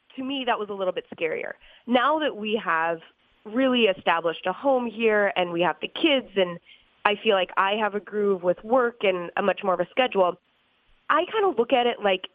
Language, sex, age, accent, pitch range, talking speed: English, female, 20-39, American, 180-250 Hz, 225 wpm